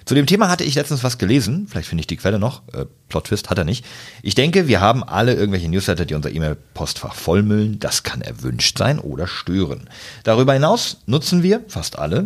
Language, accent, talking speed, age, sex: German, German, 210 wpm, 40-59, male